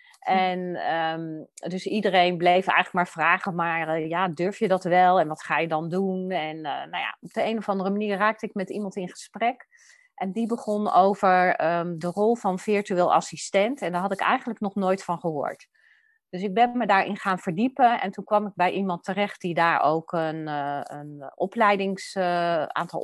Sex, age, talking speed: female, 30-49, 200 wpm